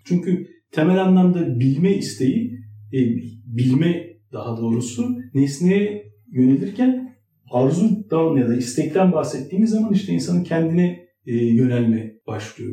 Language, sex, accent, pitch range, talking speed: Turkish, male, native, 140-200 Hz, 110 wpm